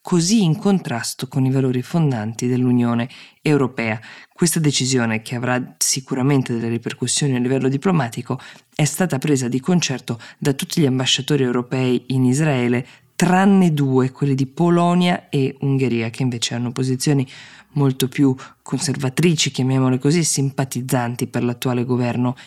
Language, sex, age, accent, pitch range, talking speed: Italian, female, 20-39, native, 125-145 Hz, 135 wpm